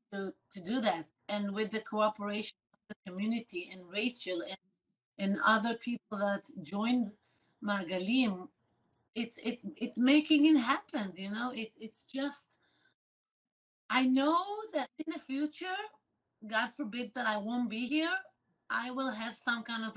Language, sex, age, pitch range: English, female, 30-49, 205-255 Hz